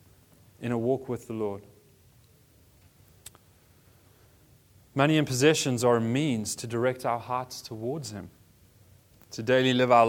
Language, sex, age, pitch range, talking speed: English, male, 30-49, 115-175 Hz, 130 wpm